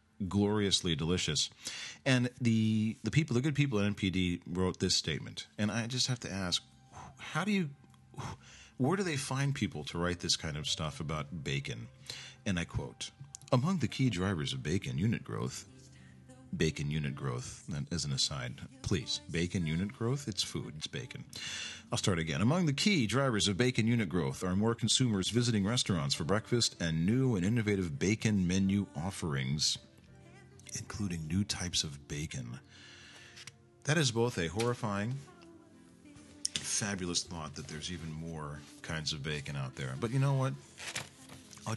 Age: 40-59